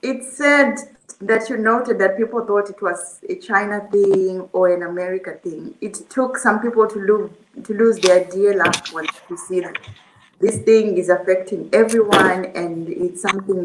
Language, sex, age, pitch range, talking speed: English, female, 20-39, 180-230 Hz, 175 wpm